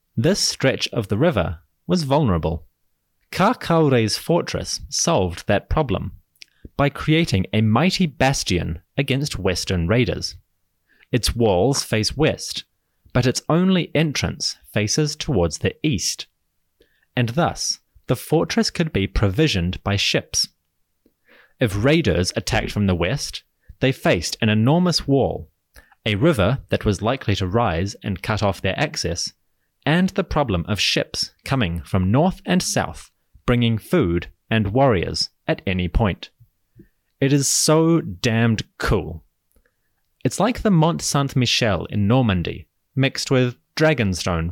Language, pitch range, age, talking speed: English, 90-140 Hz, 30-49, 130 wpm